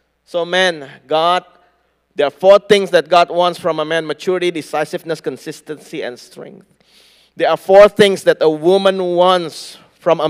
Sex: male